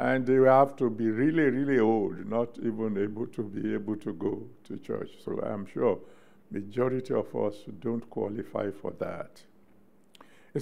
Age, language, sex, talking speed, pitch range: 60-79, English, male, 165 wpm, 130-180 Hz